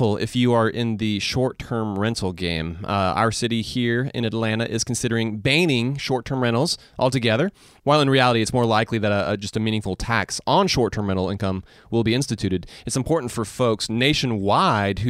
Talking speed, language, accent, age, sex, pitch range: 170 wpm, English, American, 30-49, male, 110-135 Hz